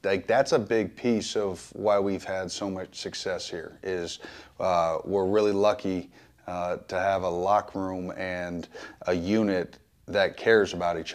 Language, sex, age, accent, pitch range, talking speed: English, male, 30-49, American, 95-110 Hz, 165 wpm